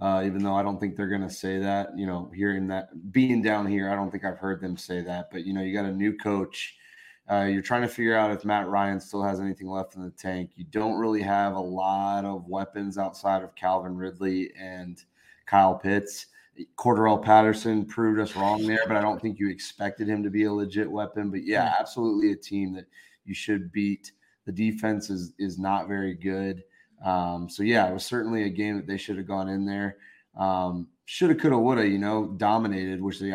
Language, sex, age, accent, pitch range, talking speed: English, male, 20-39, American, 95-105 Hz, 220 wpm